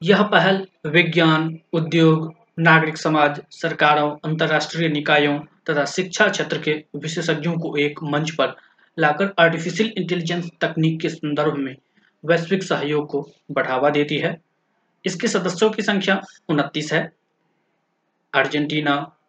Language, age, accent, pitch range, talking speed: Hindi, 20-39, native, 150-170 Hz, 120 wpm